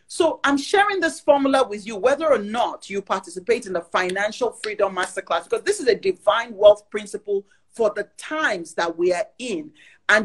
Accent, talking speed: Nigerian, 185 wpm